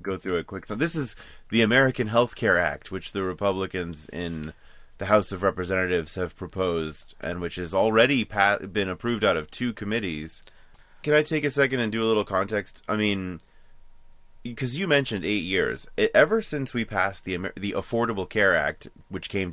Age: 30-49